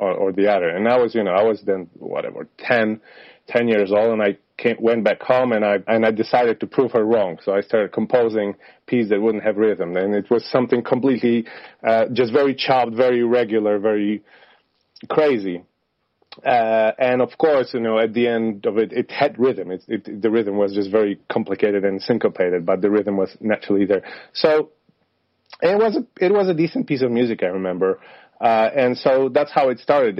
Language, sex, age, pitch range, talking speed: English, male, 30-49, 100-120 Hz, 205 wpm